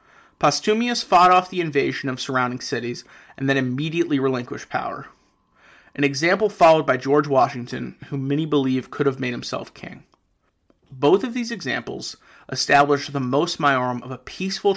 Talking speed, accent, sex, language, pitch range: 155 wpm, American, male, English, 130-160 Hz